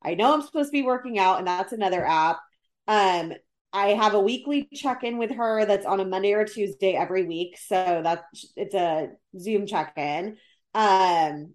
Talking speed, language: 180 wpm, English